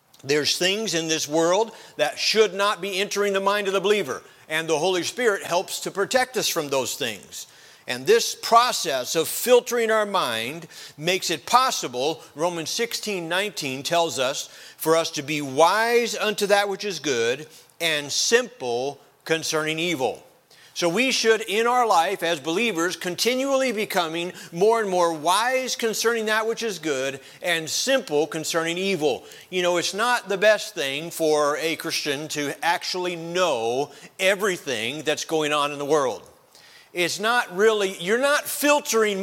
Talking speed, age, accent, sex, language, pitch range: 160 wpm, 50-69, American, male, English, 160-225 Hz